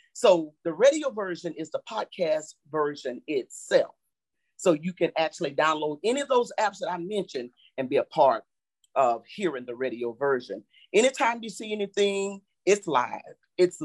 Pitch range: 160-245 Hz